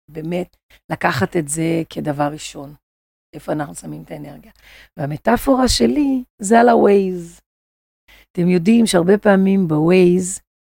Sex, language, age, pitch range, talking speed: female, Hebrew, 40-59, 150-210 Hz, 115 wpm